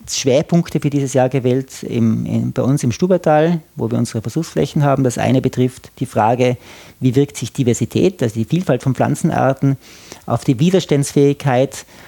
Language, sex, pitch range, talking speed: German, male, 120-140 Hz, 155 wpm